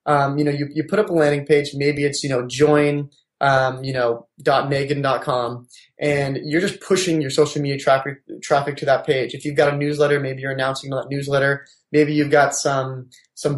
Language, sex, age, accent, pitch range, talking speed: English, male, 20-39, American, 140-155 Hz, 215 wpm